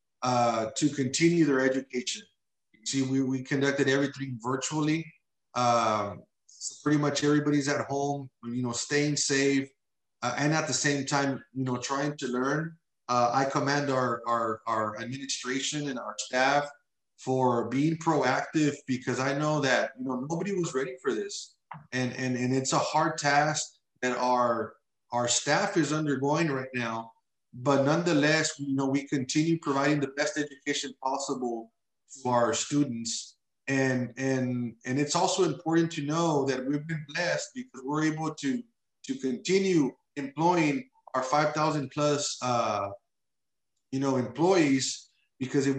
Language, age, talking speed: English, 30-49, 145 wpm